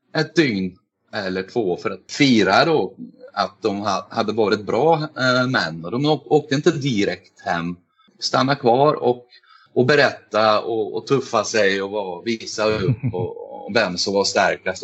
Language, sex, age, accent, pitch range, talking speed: Swedish, male, 30-49, native, 95-130 Hz, 155 wpm